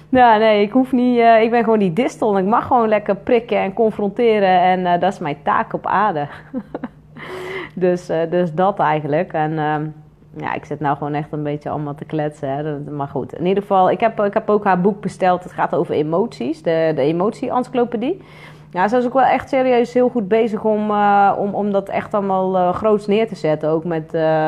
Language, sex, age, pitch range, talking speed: Dutch, female, 30-49, 155-215 Hz, 220 wpm